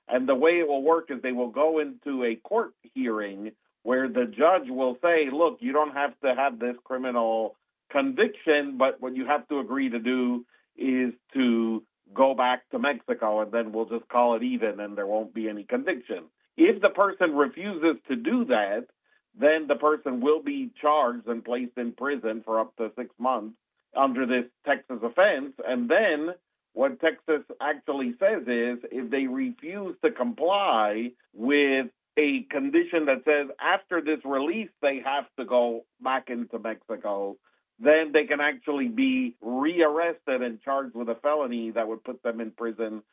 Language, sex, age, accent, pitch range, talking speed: English, male, 50-69, American, 120-155 Hz, 175 wpm